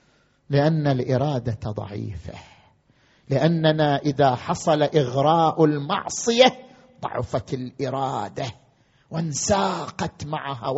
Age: 50-69